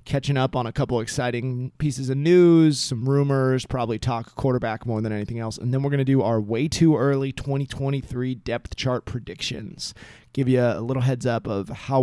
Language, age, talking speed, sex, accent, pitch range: English, 30-49, 190 wpm, male, American, 120-140 Hz